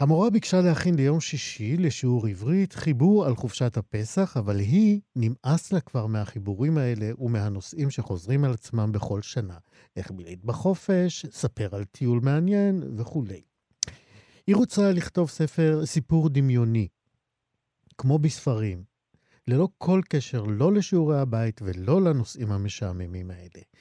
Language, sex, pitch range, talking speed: Hebrew, male, 110-155 Hz, 125 wpm